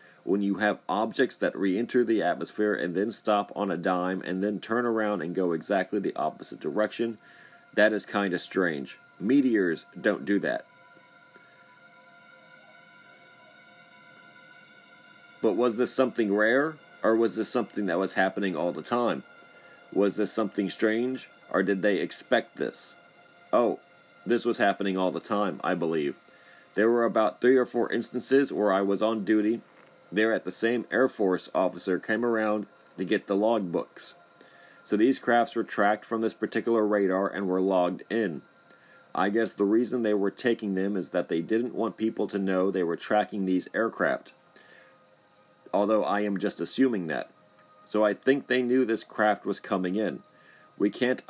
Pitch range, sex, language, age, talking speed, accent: 100-115 Hz, male, English, 40-59, 170 wpm, American